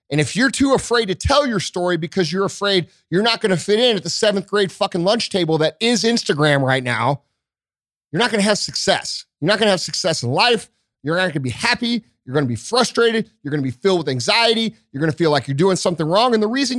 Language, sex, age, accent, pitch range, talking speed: English, male, 30-49, American, 155-220 Hz, 265 wpm